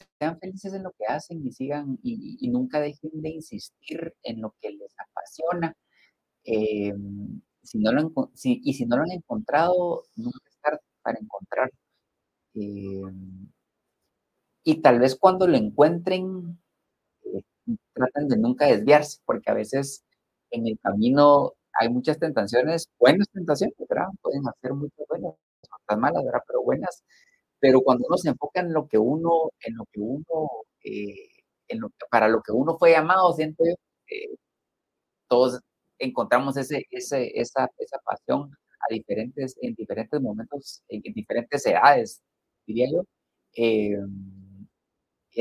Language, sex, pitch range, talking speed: Spanish, male, 120-180 Hz, 150 wpm